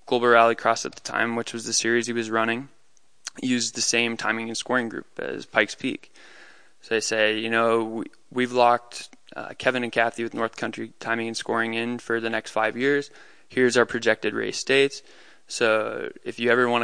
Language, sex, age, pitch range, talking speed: English, male, 20-39, 115-120 Hz, 205 wpm